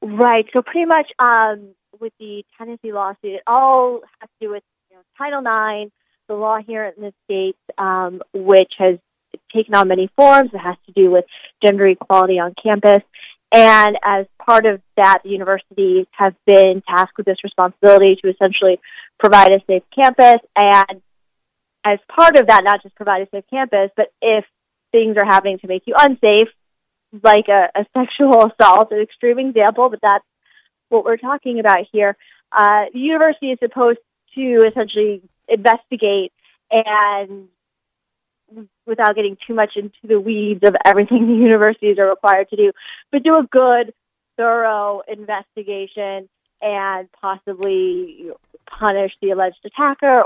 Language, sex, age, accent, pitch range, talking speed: English, female, 20-39, American, 195-235 Hz, 155 wpm